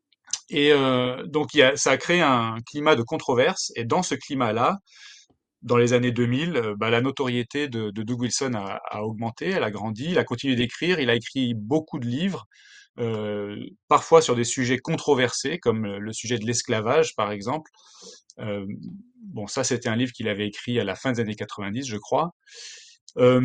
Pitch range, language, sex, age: 115-155 Hz, French, male, 30-49